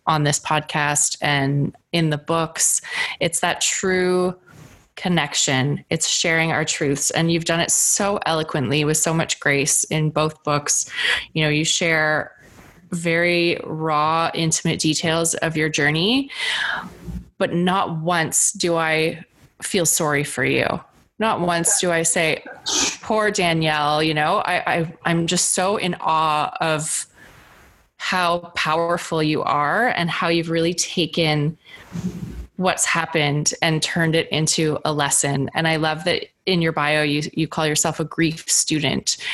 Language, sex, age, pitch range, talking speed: English, female, 20-39, 155-175 Hz, 145 wpm